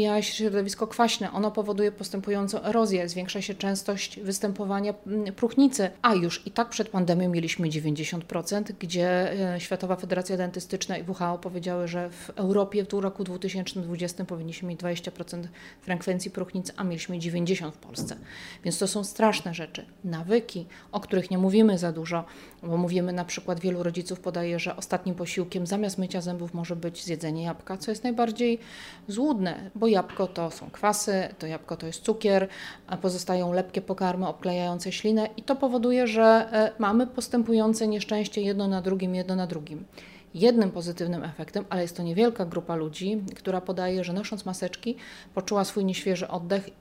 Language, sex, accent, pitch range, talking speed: Polish, female, native, 175-210 Hz, 160 wpm